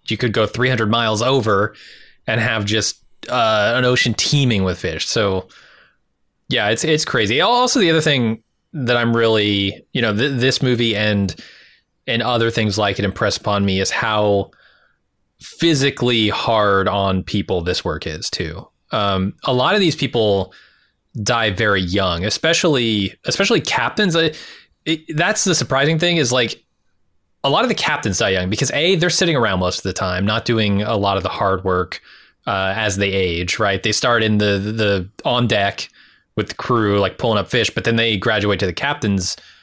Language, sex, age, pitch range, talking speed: English, male, 20-39, 100-130 Hz, 185 wpm